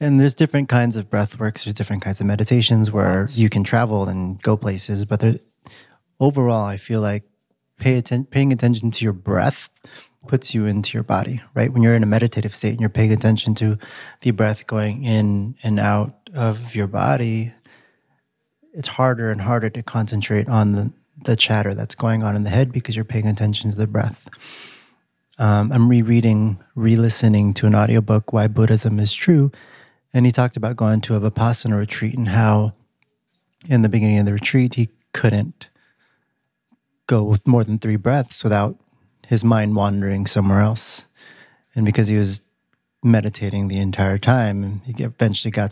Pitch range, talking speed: 105-115 Hz, 175 wpm